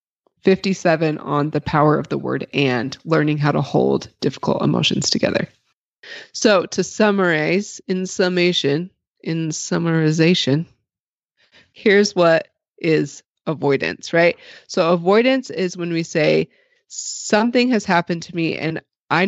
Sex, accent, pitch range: female, American, 150-195 Hz